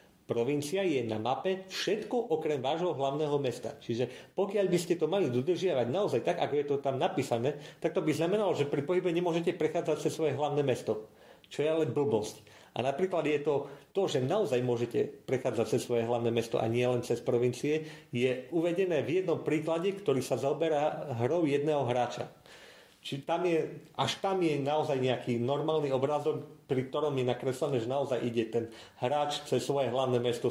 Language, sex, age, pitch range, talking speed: Slovak, male, 40-59, 120-155 Hz, 175 wpm